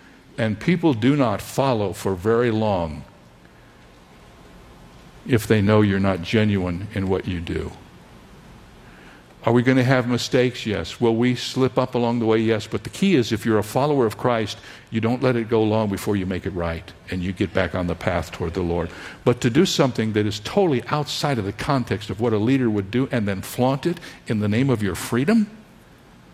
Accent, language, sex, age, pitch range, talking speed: American, English, male, 60-79, 105-140 Hz, 205 wpm